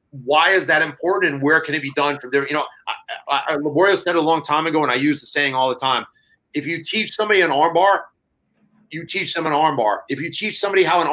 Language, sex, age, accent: English, male, 30-49, American